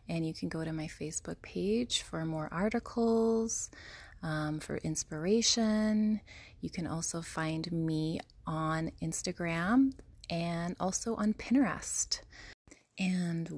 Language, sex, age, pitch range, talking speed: English, female, 20-39, 150-170 Hz, 115 wpm